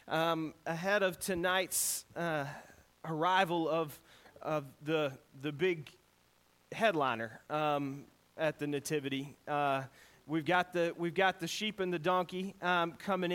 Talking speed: 130 wpm